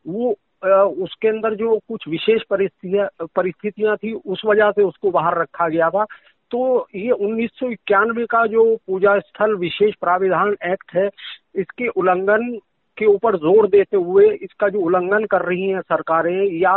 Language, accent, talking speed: Hindi, native, 160 wpm